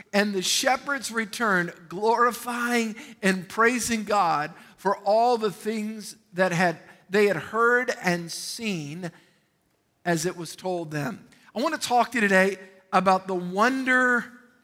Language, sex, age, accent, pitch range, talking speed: English, male, 50-69, American, 190-235 Hz, 140 wpm